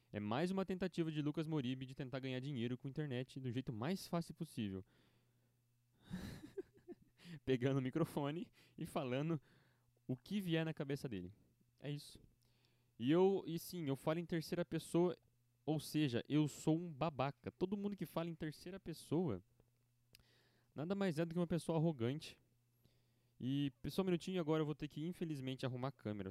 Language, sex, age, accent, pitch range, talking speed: Portuguese, male, 20-39, Brazilian, 120-160 Hz, 170 wpm